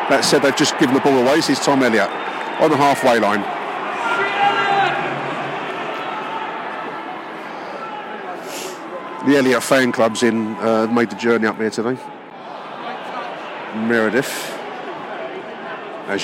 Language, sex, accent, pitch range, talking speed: English, male, British, 115-145 Hz, 110 wpm